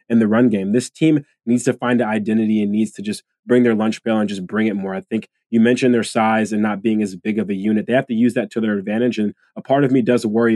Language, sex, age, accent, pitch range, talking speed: English, male, 20-39, American, 110-120 Hz, 300 wpm